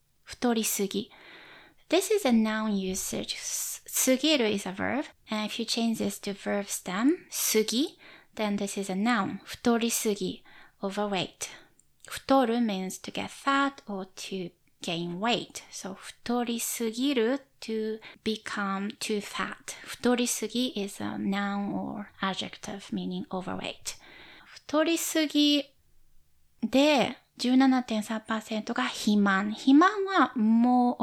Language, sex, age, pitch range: Japanese, female, 20-39, 195-255 Hz